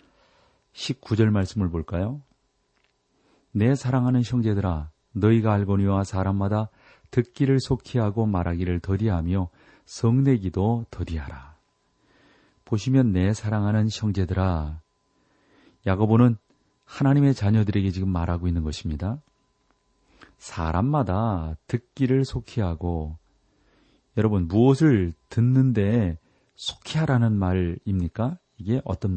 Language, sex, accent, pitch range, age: Korean, male, native, 90-120 Hz, 40-59